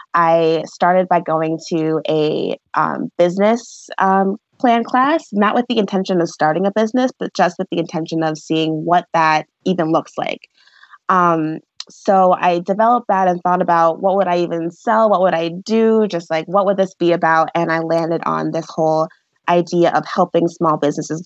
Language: English